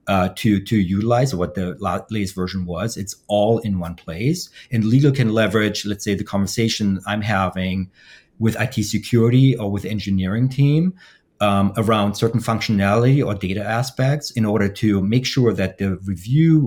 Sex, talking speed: male, 165 wpm